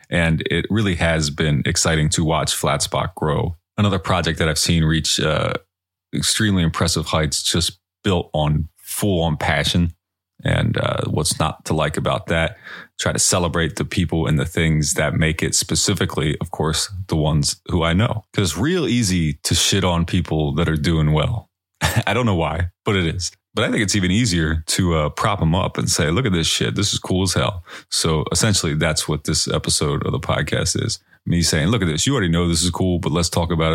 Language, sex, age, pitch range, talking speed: English, male, 30-49, 80-95 Hz, 215 wpm